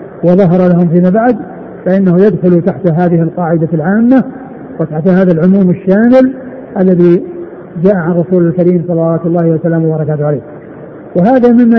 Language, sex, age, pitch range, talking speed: Arabic, male, 50-69, 175-200 Hz, 135 wpm